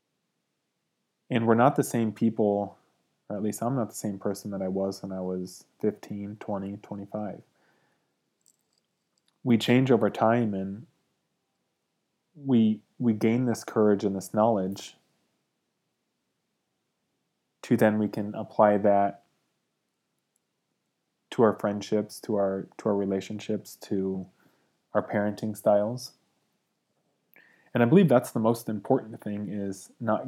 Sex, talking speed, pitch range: male, 125 wpm, 100-115 Hz